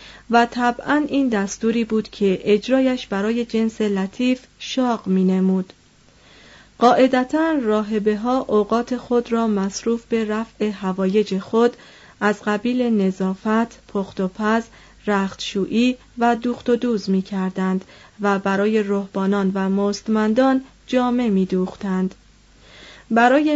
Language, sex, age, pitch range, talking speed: Persian, female, 30-49, 195-240 Hz, 105 wpm